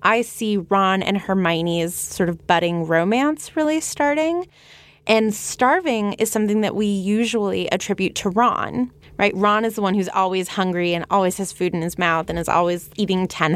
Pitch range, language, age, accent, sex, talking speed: 185-250 Hz, English, 20-39, American, female, 180 wpm